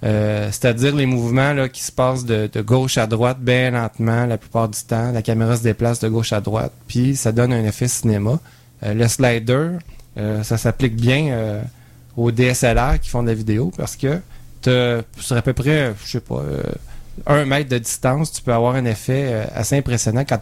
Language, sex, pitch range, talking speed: French, male, 110-130 Hz, 210 wpm